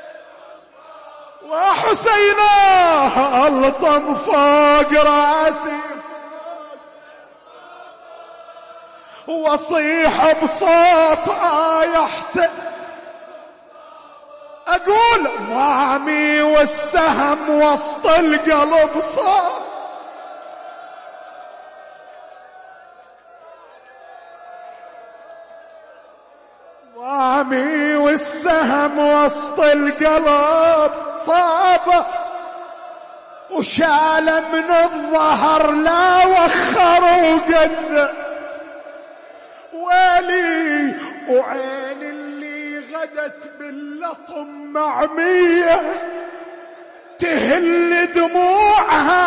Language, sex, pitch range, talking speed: Arabic, male, 300-345 Hz, 40 wpm